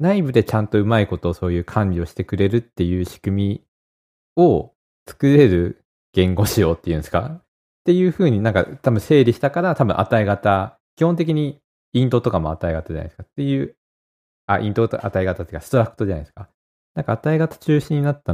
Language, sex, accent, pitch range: Japanese, male, native, 80-115 Hz